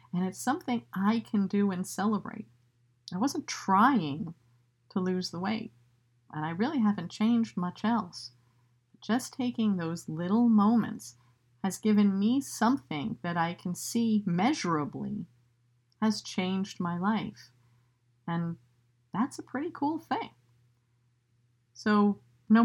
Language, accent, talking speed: English, American, 125 wpm